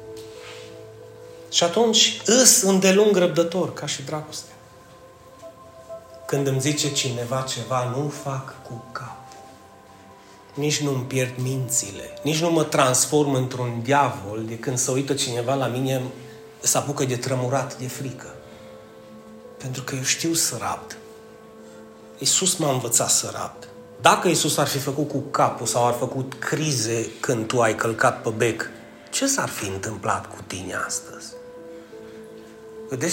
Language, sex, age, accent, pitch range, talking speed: Romanian, male, 30-49, native, 130-185 Hz, 140 wpm